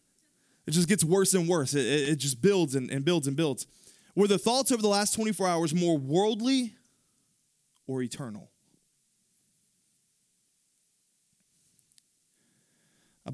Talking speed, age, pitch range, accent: 125 wpm, 20-39, 125-165 Hz, American